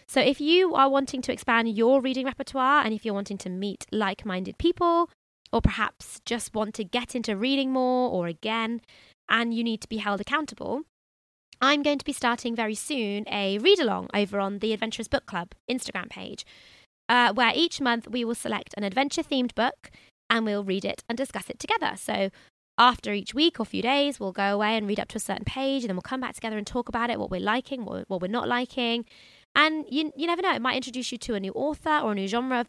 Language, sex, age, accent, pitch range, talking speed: English, female, 20-39, British, 215-265 Hz, 230 wpm